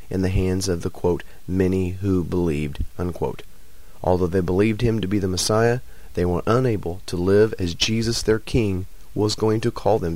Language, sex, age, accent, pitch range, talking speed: English, male, 30-49, American, 90-110 Hz, 190 wpm